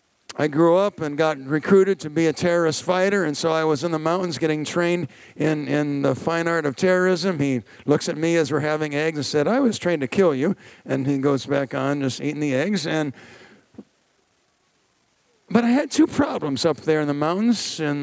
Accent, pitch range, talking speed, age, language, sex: American, 145-205 Hz, 215 wpm, 50-69, English, male